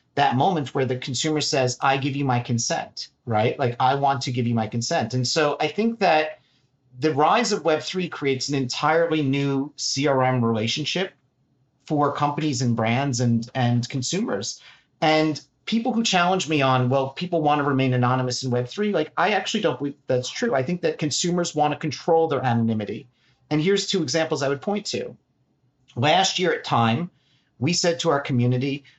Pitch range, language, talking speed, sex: 125-160 Hz, English, 185 wpm, male